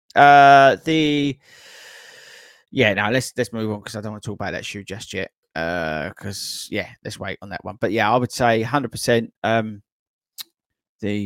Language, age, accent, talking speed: English, 30-49, British, 185 wpm